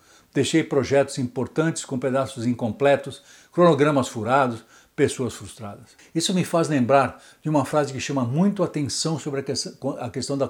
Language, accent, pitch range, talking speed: Portuguese, Brazilian, 125-160 Hz, 160 wpm